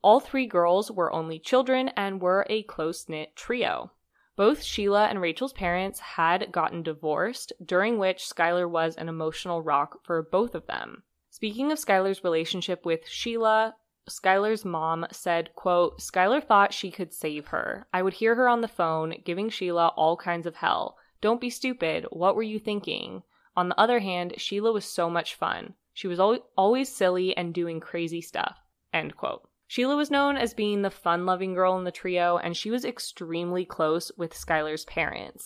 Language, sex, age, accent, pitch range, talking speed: English, female, 20-39, American, 170-220 Hz, 175 wpm